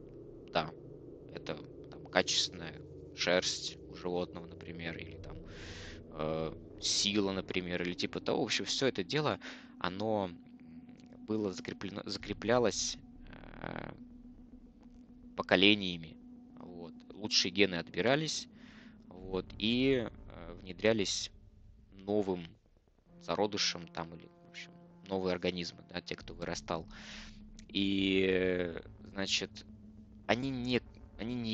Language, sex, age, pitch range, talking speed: Russian, male, 20-39, 90-115 Hz, 100 wpm